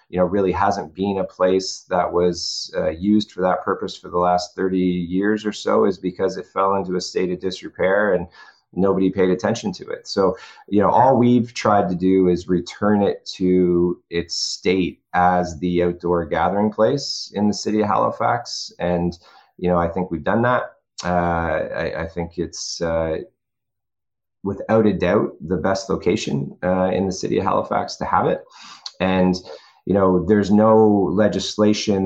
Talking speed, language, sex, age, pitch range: 180 wpm, English, male, 30-49, 85-100 Hz